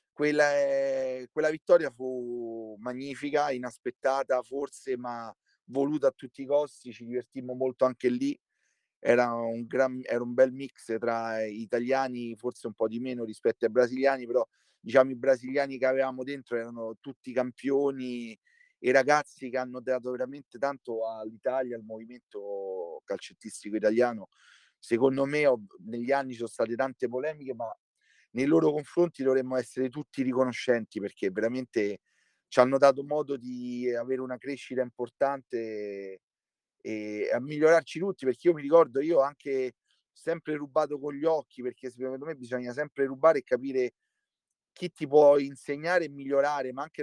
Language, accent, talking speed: Italian, native, 150 wpm